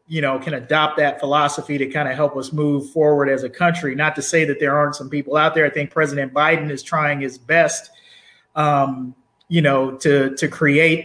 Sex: male